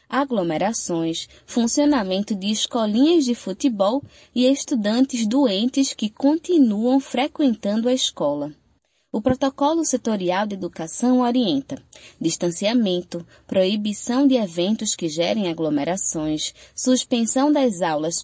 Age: 20-39